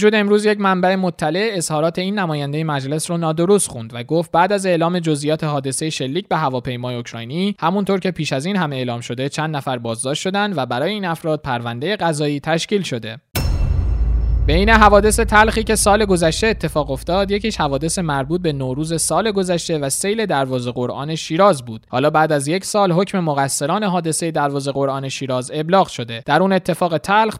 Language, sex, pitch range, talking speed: Persian, male, 135-185 Hz, 180 wpm